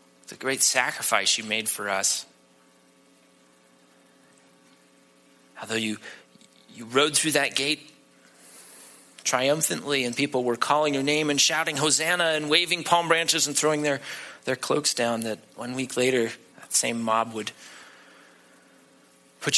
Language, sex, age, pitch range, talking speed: English, male, 30-49, 95-140 Hz, 130 wpm